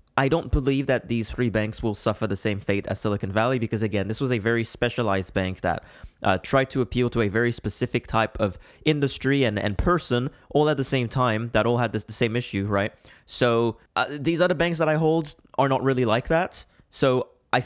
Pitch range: 115-155 Hz